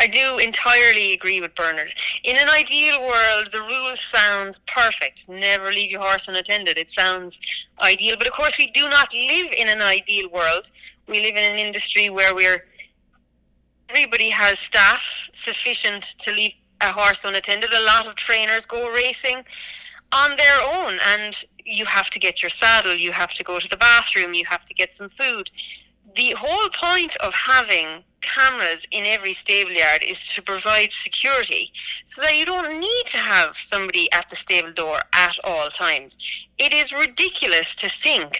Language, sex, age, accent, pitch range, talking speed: English, female, 30-49, Irish, 190-255 Hz, 175 wpm